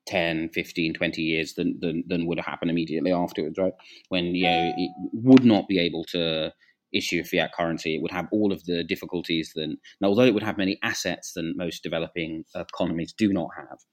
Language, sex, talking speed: English, male, 205 wpm